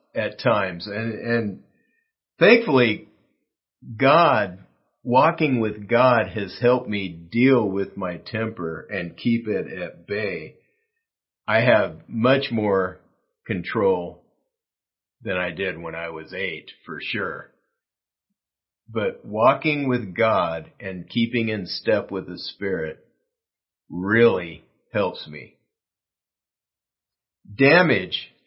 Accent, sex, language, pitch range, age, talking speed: American, male, English, 100-125 Hz, 50-69, 105 wpm